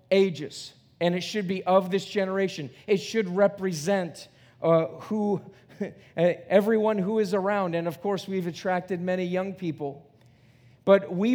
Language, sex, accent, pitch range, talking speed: English, male, American, 170-210 Hz, 145 wpm